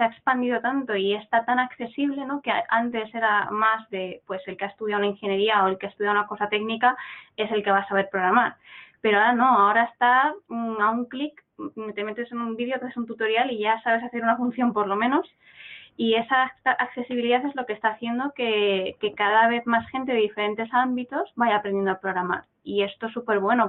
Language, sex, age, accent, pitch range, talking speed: Spanish, female, 20-39, Spanish, 200-230 Hz, 225 wpm